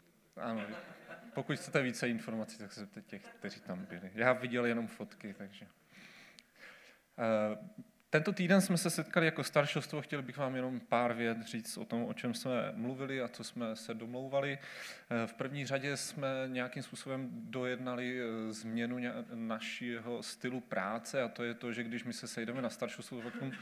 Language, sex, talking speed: Czech, male, 160 wpm